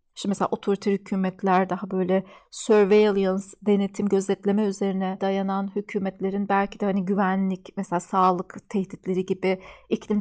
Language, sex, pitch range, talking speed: Turkish, female, 195-240 Hz, 125 wpm